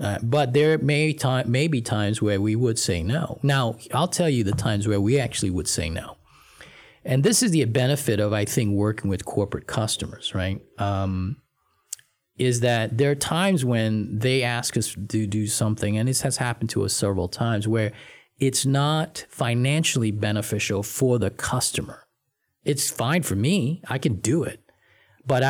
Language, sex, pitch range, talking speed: English, male, 105-140 Hz, 180 wpm